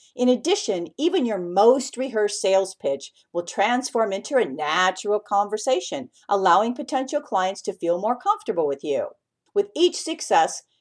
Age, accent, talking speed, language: 50-69, American, 145 wpm, English